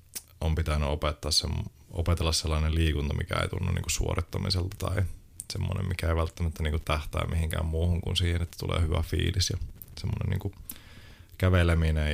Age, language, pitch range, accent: 30-49, Finnish, 80-95 Hz, native